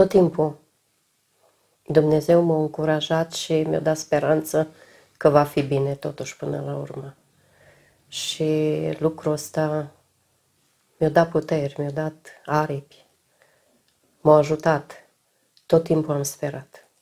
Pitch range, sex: 155-190 Hz, female